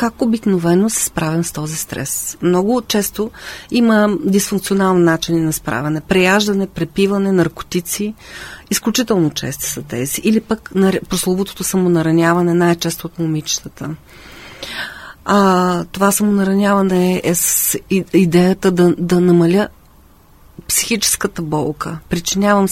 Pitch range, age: 165-210 Hz, 40-59